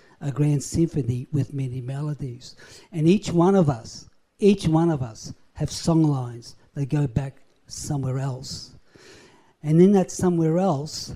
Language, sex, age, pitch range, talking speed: English, male, 50-69, 135-160 Hz, 150 wpm